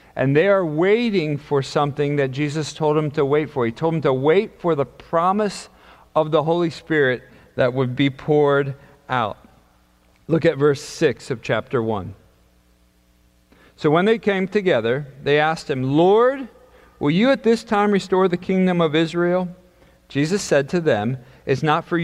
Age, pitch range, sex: 40-59, 135-175 Hz, male